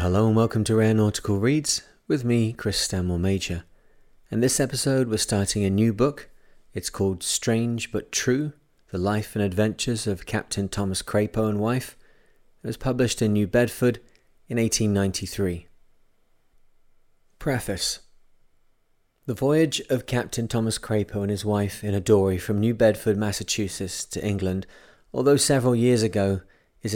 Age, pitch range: 30-49, 100-120 Hz